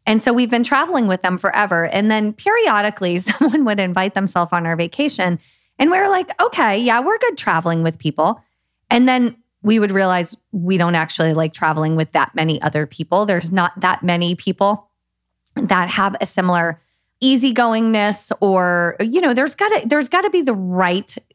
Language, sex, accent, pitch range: English, female, American, 175-225 Hz